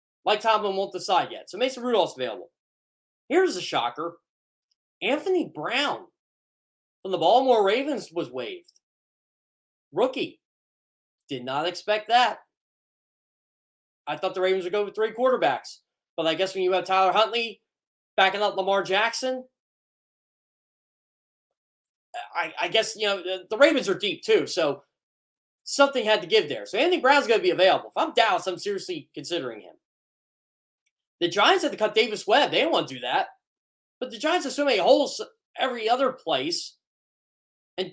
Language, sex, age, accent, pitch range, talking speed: English, male, 20-39, American, 185-260 Hz, 160 wpm